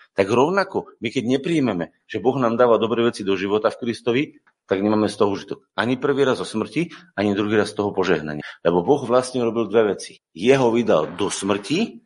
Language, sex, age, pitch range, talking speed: Slovak, male, 40-59, 120-165 Hz, 205 wpm